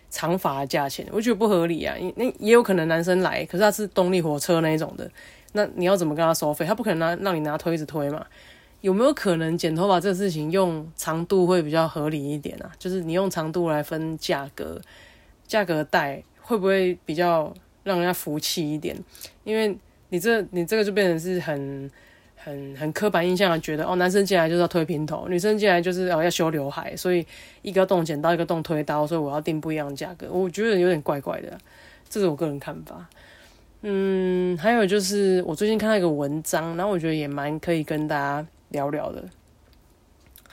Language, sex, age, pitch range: Chinese, female, 20-39, 155-190 Hz